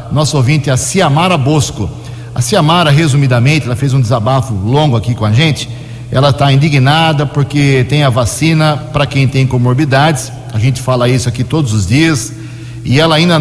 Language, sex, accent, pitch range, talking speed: Portuguese, male, Brazilian, 120-150 Hz, 180 wpm